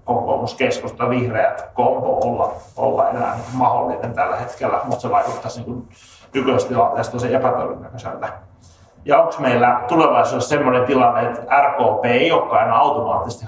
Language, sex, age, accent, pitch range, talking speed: Finnish, male, 30-49, native, 110-130 Hz, 125 wpm